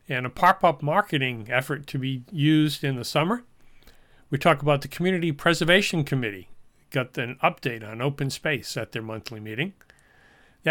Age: 40-59